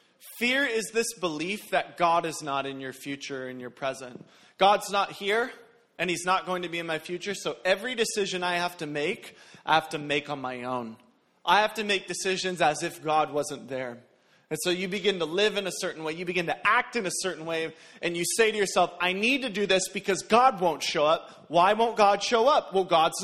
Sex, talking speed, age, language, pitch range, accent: male, 230 wpm, 30-49, English, 150-205 Hz, American